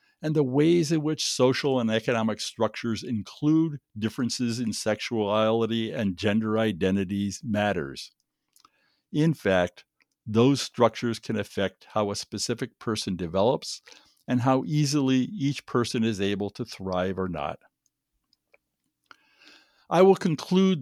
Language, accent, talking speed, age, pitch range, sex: English, American, 120 wpm, 60-79, 105-145 Hz, male